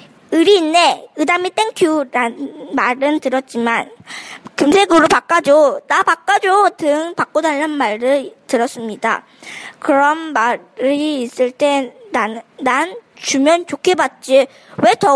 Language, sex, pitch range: Korean, male, 255-325 Hz